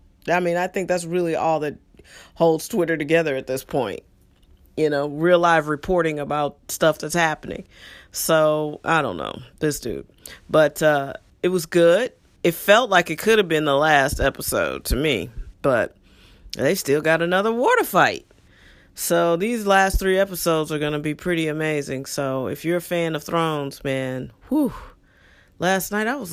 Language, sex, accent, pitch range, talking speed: English, female, American, 145-185 Hz, 180 wpm